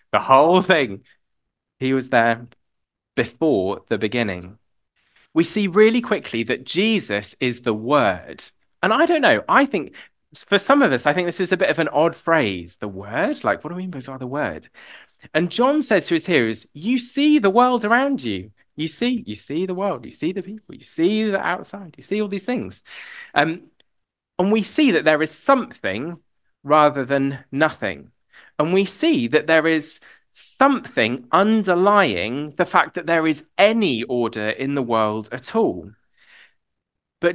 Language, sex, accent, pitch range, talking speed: English, male, British, 125-205 Hz, 180 wpm